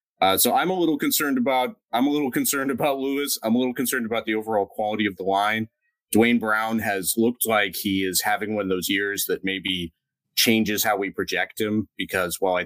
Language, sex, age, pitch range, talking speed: English, male, 30-49, 105-140 Hz, 220 wpm